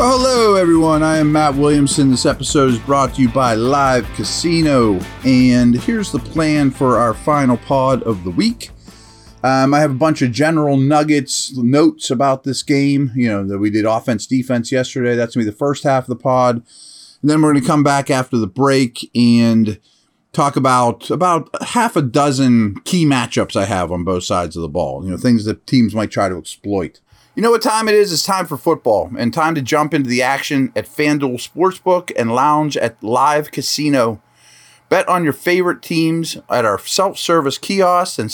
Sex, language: male, English